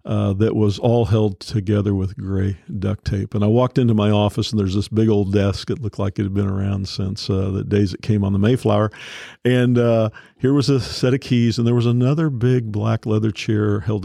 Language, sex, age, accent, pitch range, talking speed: English, male, 50-69, American, 105-125 Hz, 235 wpm